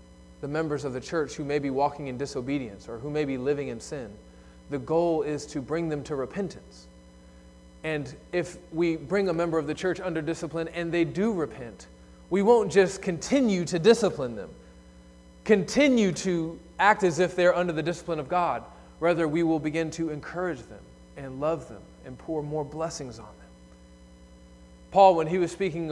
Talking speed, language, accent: 185 wpm, English, American